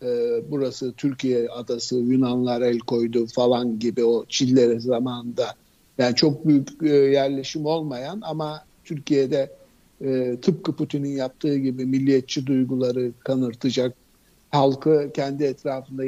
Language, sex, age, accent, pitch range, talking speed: Turkish, male, 60-79, native, 130-170 Hz, 105 wpm